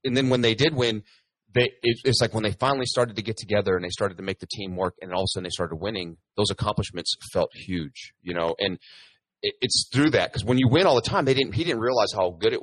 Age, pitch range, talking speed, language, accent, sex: 30-49, 95-125 Hz, 280 wpm, English, American, male